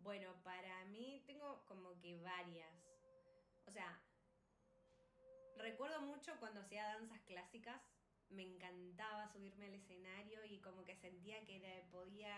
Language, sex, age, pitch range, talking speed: Spanish, female, 20-39, 175-205 Hz, 125 wpm